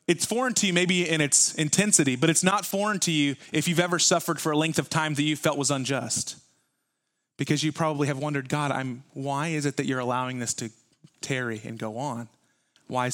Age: 30-49